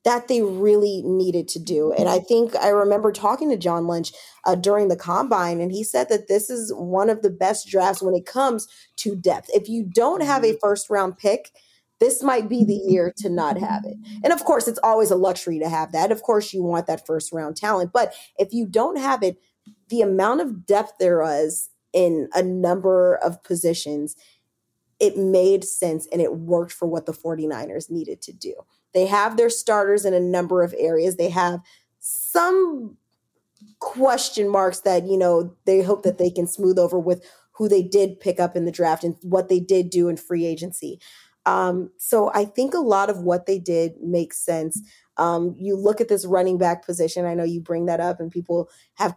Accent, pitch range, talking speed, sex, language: American, 175-210 Hz, 205 wpm, female, English